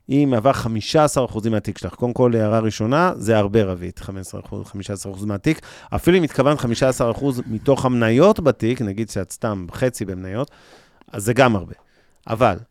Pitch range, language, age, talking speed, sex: 110-145 Hz, Hebrew, 30-49, 155 wpm, male